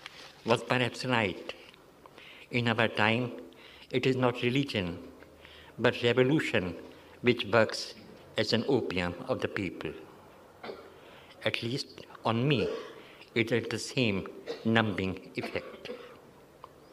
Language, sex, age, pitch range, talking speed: Hindi, male, 60-79, 120-140 Hz, 105 wpm